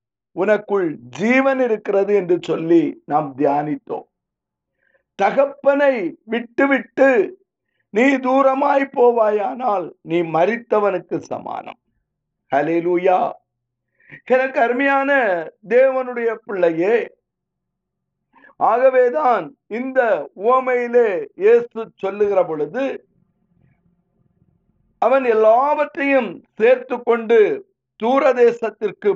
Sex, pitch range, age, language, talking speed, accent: male, 195-280 Hz, 50-69, Tamil, 60 wpm, native